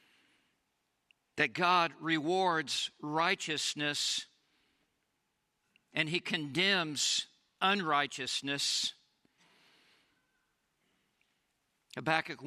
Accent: American